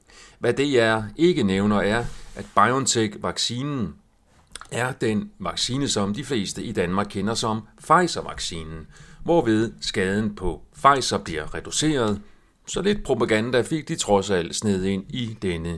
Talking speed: 135 wpm